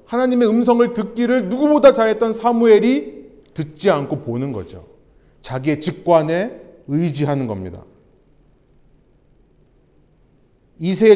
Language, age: Korean, 30-49